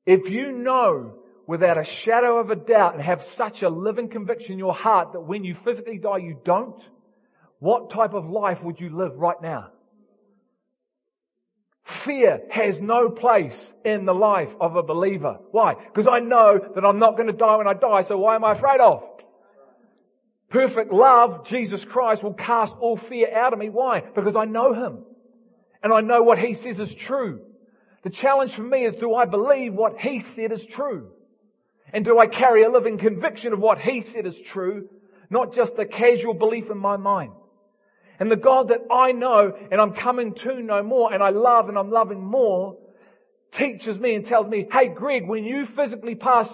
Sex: male